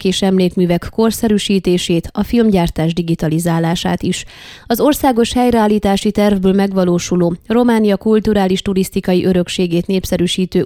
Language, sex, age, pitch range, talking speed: Hungarian, female, 20-39, 175-215 Hz, 95 wpm